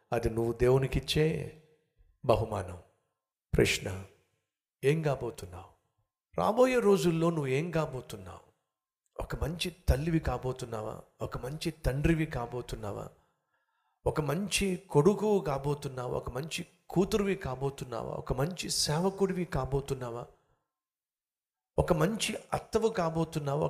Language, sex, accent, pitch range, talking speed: Telugu, male, native, 130-185 Hz, 90 wpm